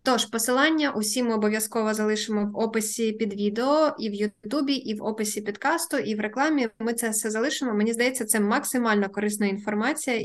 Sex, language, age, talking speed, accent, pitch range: female, Ukrainian, 20-39, 175 wpm, native, 215-270 Hz